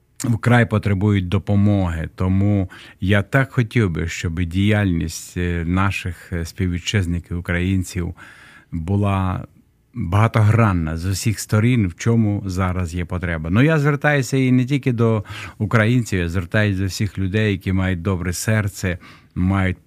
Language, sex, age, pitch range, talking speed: Russian, male, 50-69, 90-110 Hz, 120 wpm